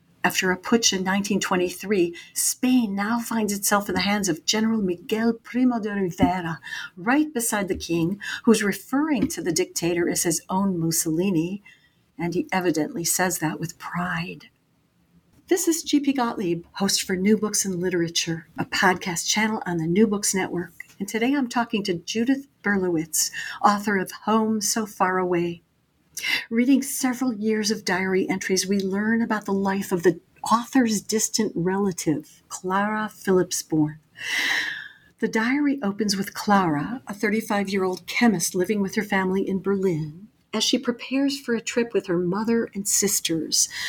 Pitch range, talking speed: 180-225 Hz, 155 wpm